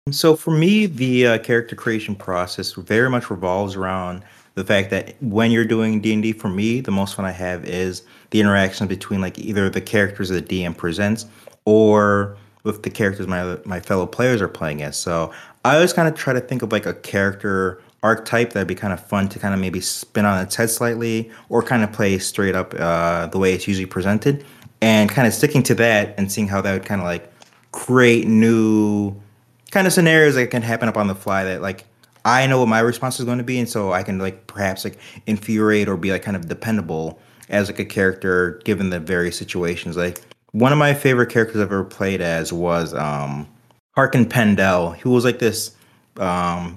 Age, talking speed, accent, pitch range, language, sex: 30-49, 215 wpm, American, 95-115 Hz, English, male